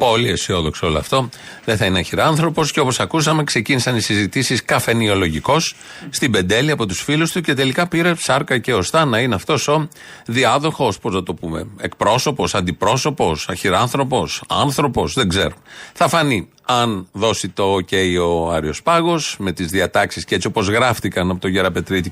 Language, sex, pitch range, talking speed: Greek, male, 95-140 Hz, 165 wpm